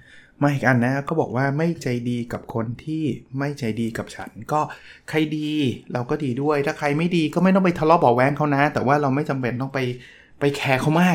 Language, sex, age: Thai, male, 20-39